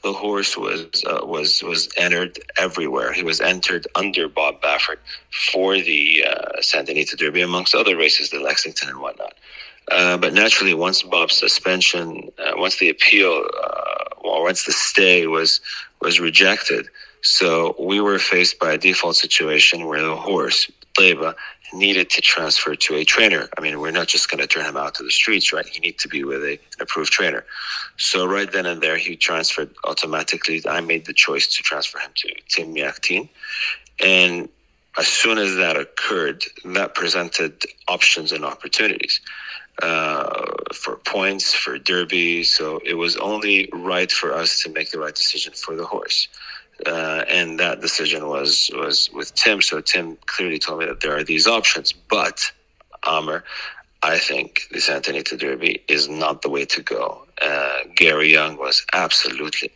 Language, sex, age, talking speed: English, male, 30-49, 170 wpm